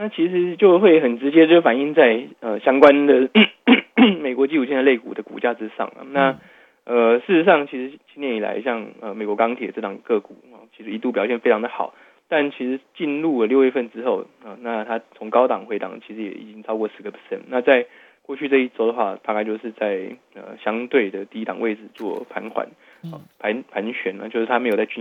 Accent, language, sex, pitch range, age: native, Chinese, male, 110-145 Hz, 20-39